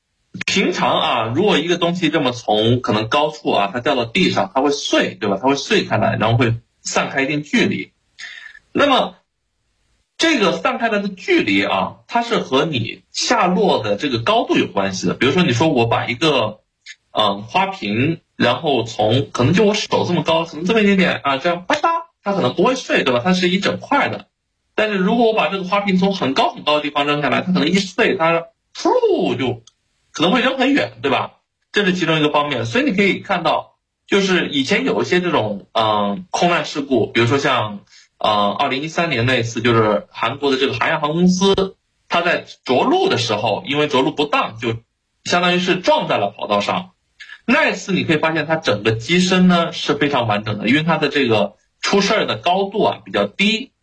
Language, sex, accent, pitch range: Chinese, male, native, 125-200 Hz